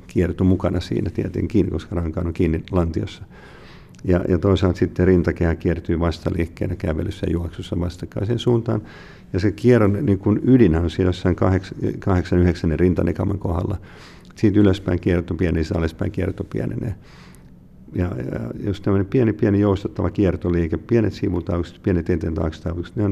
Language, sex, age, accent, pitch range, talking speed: Finnish, male, 50-69, native, 85-100 Hz, 140 wpm